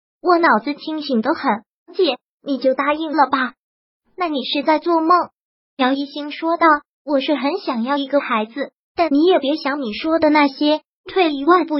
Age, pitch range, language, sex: 20-39, 270-335 Hz, Chinese, male